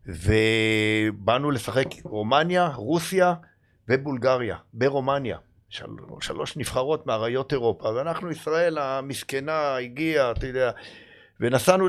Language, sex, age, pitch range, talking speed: Hebrew, male, 50-69, 115-155 Hz, 90 wpm